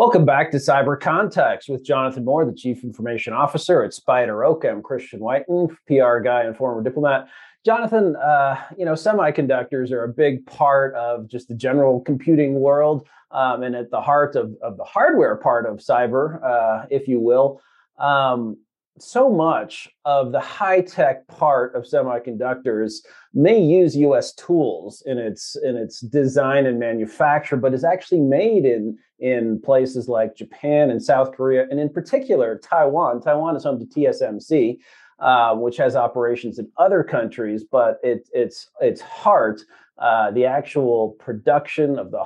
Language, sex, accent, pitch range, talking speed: English, male, American, 120-150 Hz, 160 wpm